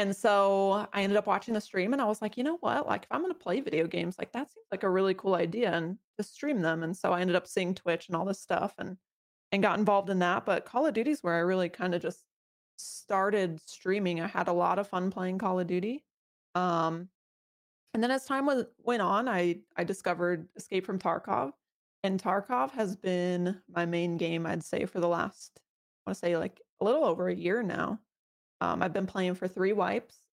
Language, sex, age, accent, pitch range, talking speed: English, female, 20-39, American, 175-205 Hz, 235 wpm